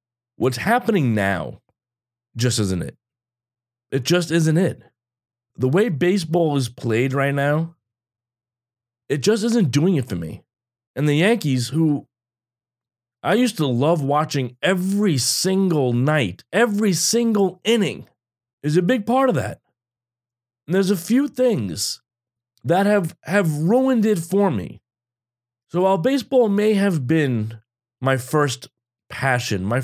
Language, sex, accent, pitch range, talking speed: English, male, American, 110-145 Hz, 135 wpm